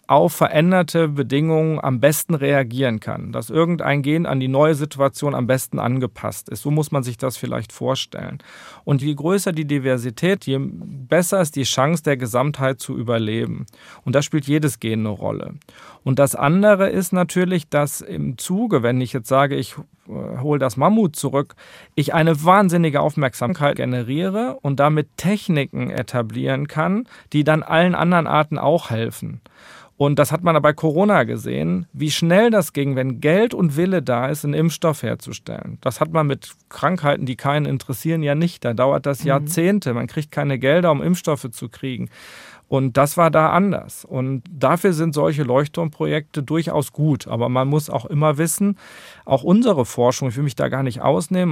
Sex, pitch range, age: male, 135-170 Hz, 40-59